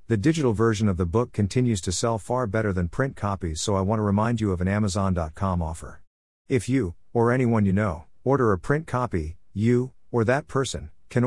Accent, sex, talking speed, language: American, male, 210 wpm, English